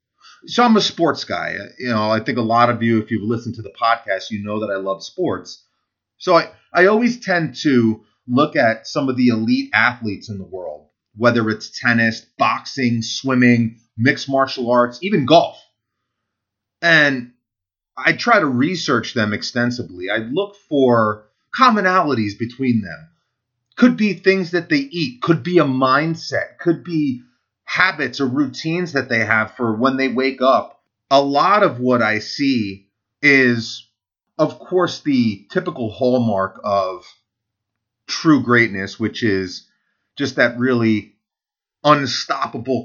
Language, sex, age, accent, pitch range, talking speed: English, male, 30-49, American, 110-145 Hz, 150 wpm